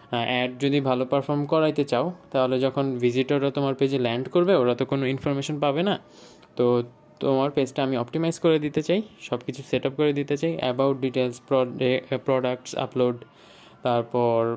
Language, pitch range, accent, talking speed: Bengali, 125-160 Hz, native, 155 wpm